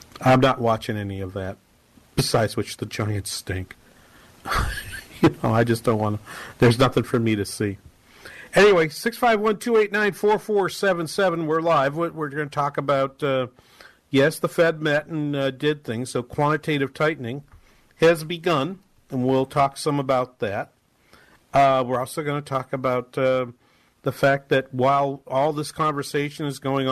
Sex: male